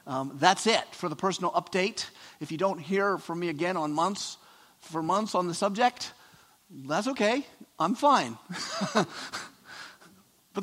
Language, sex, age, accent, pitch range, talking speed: English, male, 50-69, American, 155-195 Hz, 145 wpm